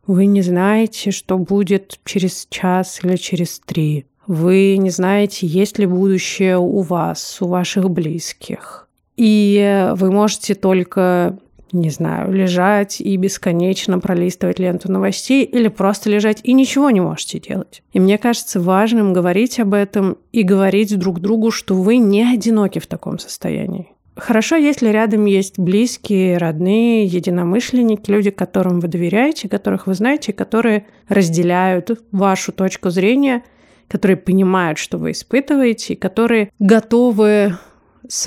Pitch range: 185-220 Hz